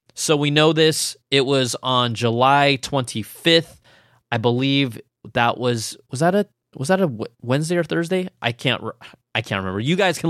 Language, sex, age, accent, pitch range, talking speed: English, male, 20-39, American, 120-155 Hz, 175 wpm